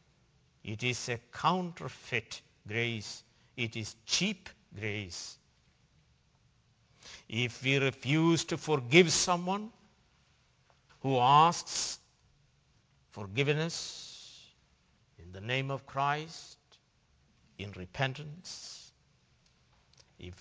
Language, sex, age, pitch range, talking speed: English, male, 60-79, 110-160 Hz, 75 wpm